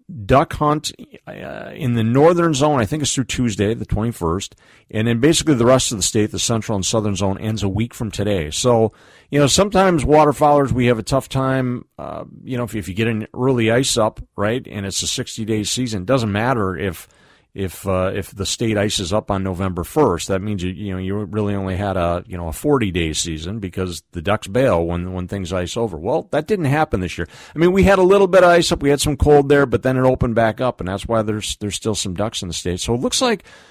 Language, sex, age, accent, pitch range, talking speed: English, male, 40-59, American, 90-120 Hz, 250 wpm